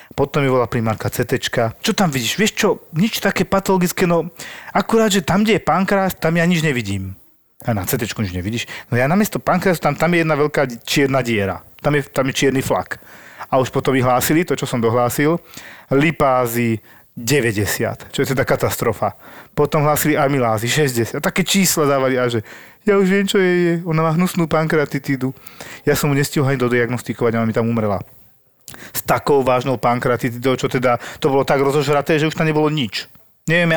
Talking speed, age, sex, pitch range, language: 190 wpm, 40-59, male, 130-165 Hz, Slovak